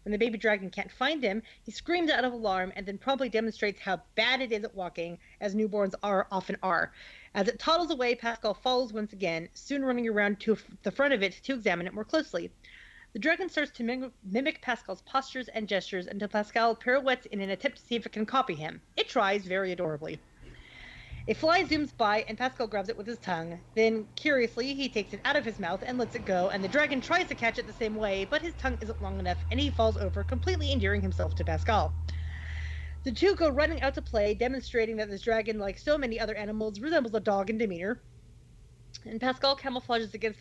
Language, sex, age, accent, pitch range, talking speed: English, female, 40-59, American, 195-255 Hz, 220 wpm